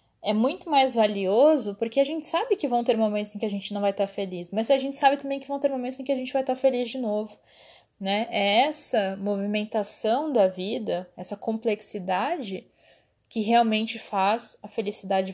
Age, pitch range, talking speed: 20-39, 190-245 Hz, 200 wpm